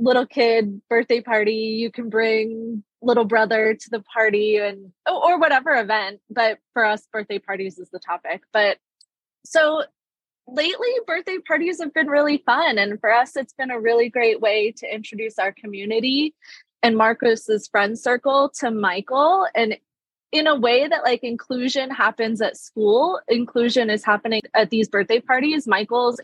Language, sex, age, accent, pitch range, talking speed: English, female, 20-39, American, 205-255 Hz, 160 wpm